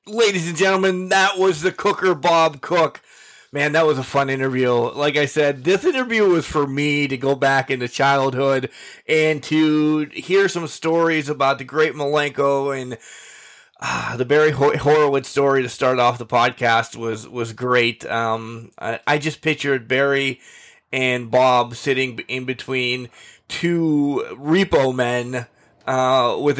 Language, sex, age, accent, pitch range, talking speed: English, male, 20-39, American, 125-160 Hz, 150 wpm